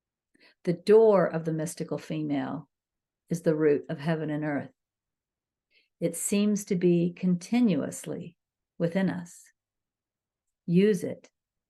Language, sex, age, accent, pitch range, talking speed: English, female, 50-69, American, 160-190 Hz, 115 wpm